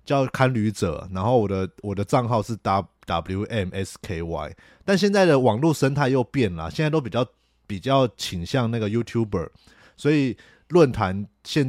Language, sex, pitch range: Chinese, male, 95-125 Hz